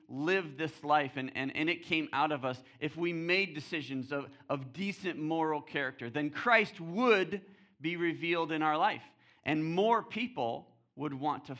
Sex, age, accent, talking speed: male, 40-59, American, 175 wpm